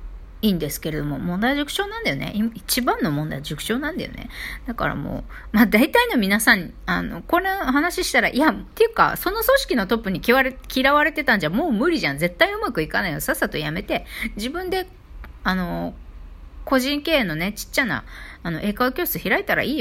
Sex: female